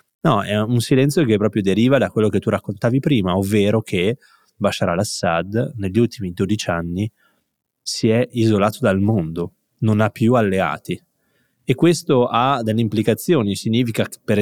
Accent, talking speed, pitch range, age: native, 155 wpm, 100-125 Hz, 20-39